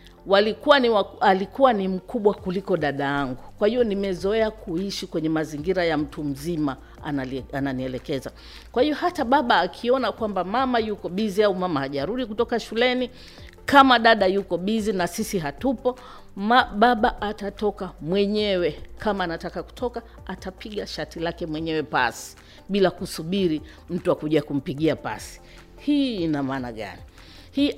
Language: Swahili